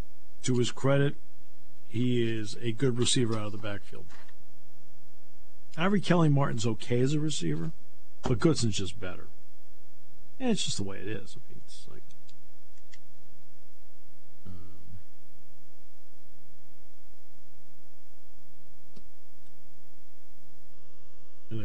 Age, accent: 50-69, American